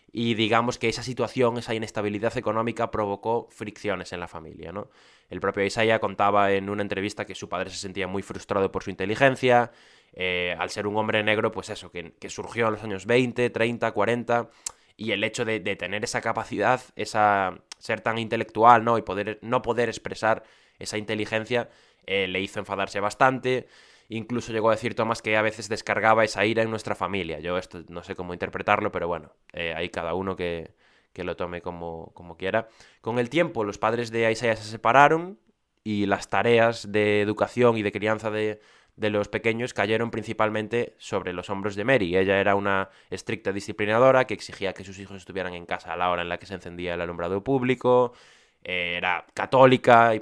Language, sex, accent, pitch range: Spanish, male, Spanish, 95-115 Hz